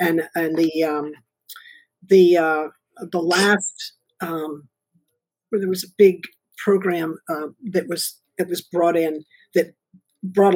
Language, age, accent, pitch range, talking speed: English, 50-69, American, 165-195 Hz, 135 wpm